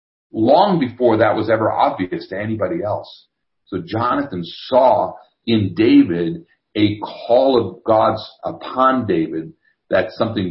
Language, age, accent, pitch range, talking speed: English, 40-59, American, 90-115 Hz, 125 wpm